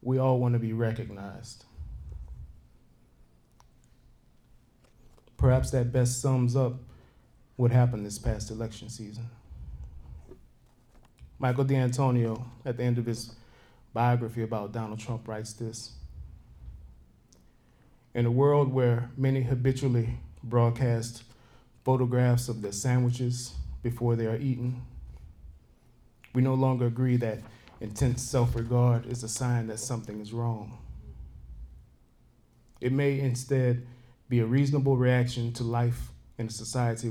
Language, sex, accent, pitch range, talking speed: English, male, American, 105-125 Hz, 115 wpm